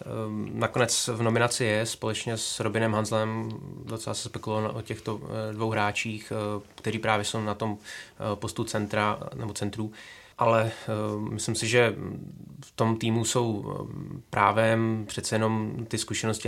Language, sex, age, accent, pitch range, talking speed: Czech, male, 20-39, native, 105-110 Hz, 135 wpm